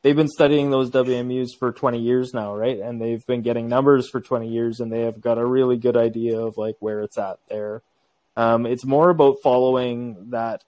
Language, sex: English, male